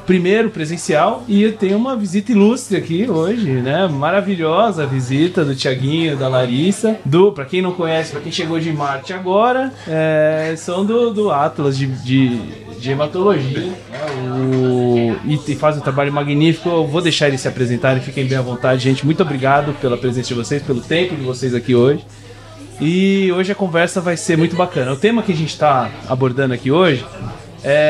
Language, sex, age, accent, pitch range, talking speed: Portuguese, male, 20-39, Brazilian, 125-175 Hz, 180 wpm